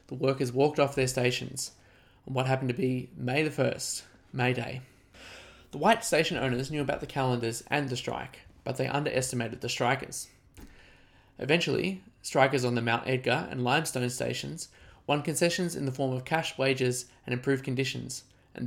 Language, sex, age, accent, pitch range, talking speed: English, male, 20-39, Australian, 125-145 Hz, 170 wpm